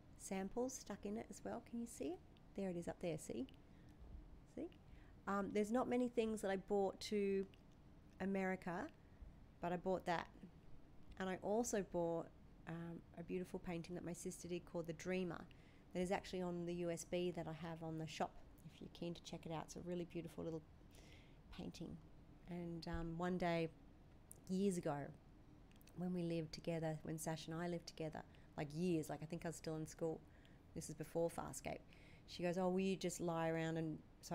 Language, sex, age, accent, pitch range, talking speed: English, female, 40-59, Australian, 160-185 Hz, 195 wpm